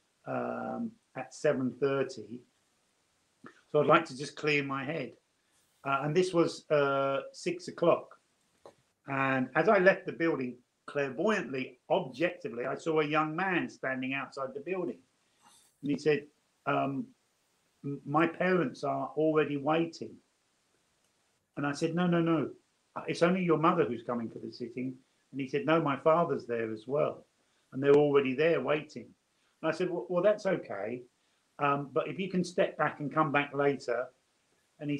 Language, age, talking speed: Danish, 50-69, 160 wpm